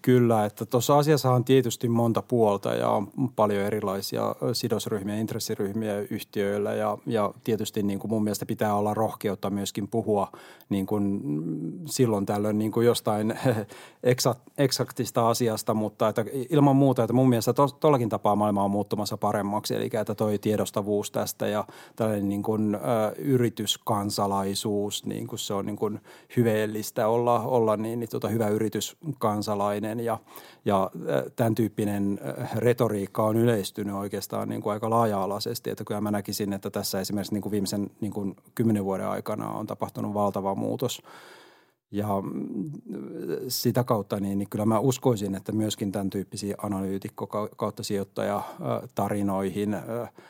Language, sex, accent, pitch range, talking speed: Finnish, male, native, 100-115 Hz, 135 wpm